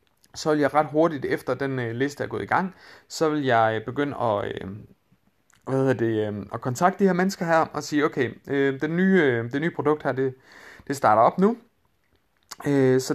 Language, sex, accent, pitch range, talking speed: Danish, male, native, 115-145 Hz, 190 wpm